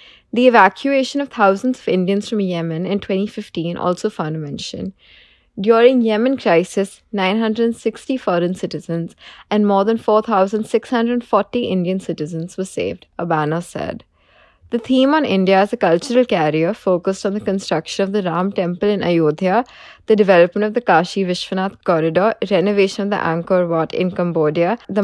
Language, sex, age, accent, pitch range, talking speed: English, female, 20-39, Indian, 175-215 Hz, 150 wpm